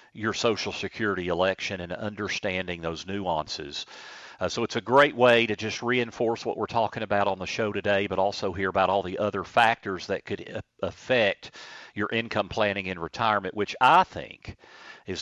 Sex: male